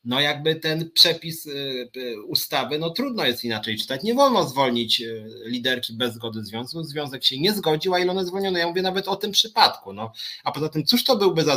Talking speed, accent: 200 wpm, native